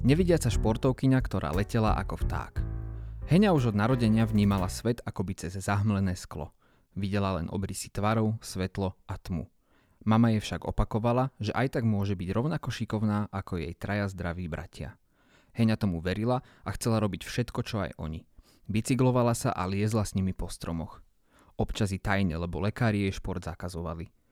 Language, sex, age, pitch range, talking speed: Slovak, male, 30-49, 95-110 Hz, 160 wpm